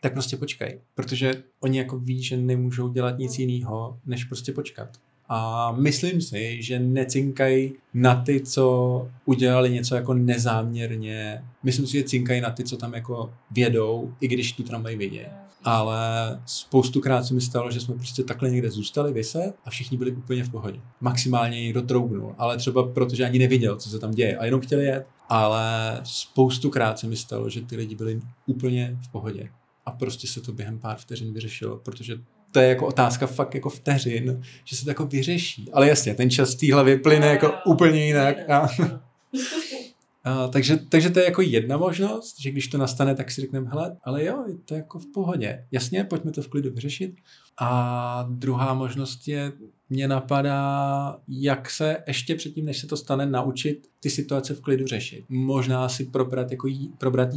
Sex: male